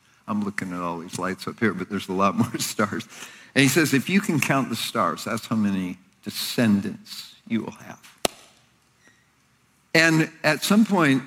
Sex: male